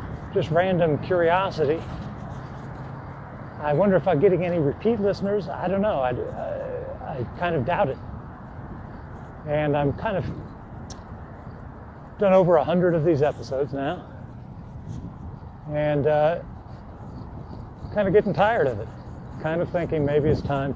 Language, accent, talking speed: English, American, 140 wpm